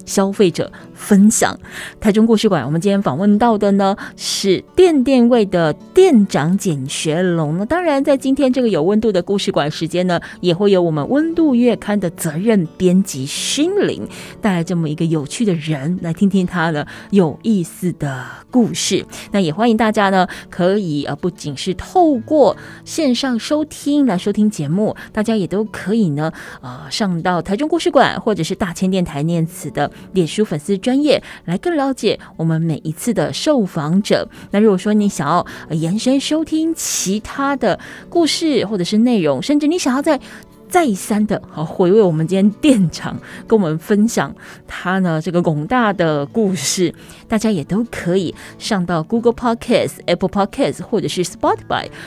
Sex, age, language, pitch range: female, 20-39, Chinese, 175-230 Hz